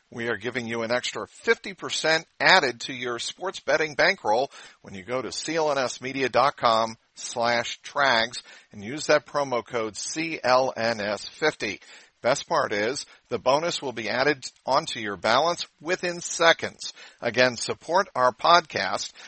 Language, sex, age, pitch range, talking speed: English, male, 50-69, 115-140 Hz, 135 wpm